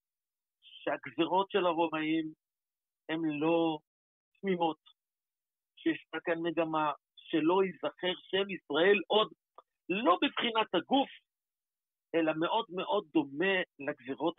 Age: 50-69